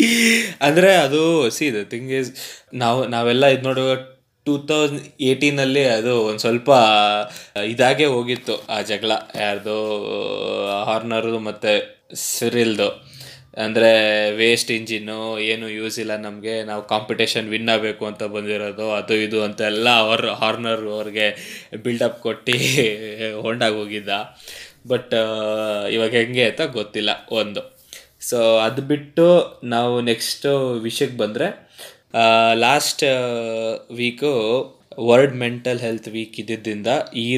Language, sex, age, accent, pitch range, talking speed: Kannada, male, 20-39, native, 110-130 Hz, 110 wpm